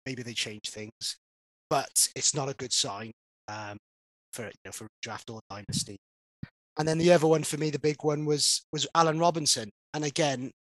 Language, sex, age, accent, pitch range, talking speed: English, male, 30-49, British, 110-135 Hz, 190 wpm